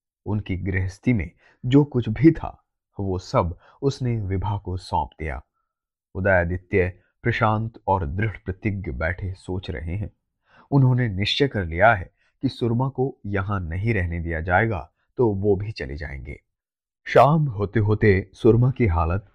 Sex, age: male, 30-49